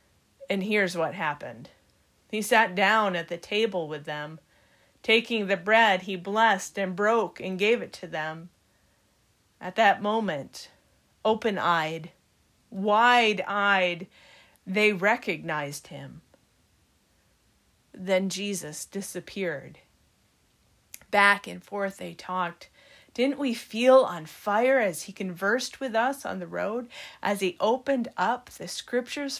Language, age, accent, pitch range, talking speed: English, 40-59, American, 180-240 Hz, 120 wpm